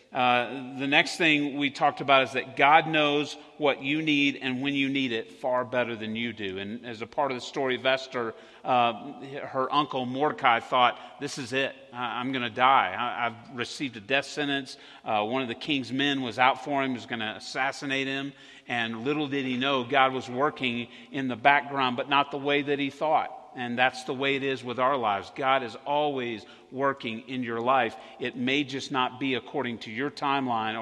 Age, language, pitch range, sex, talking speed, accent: 40-59, English, 120-140 Hz, male, 205 wpm, American